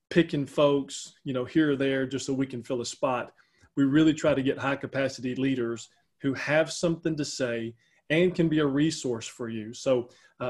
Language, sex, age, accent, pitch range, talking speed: English, male, 30-49, American, 125-155 Hz, 200 wpm